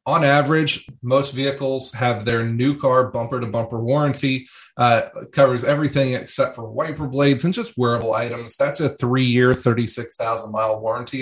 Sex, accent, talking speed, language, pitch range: male, American, 140 wpm, English, 120-140 Hz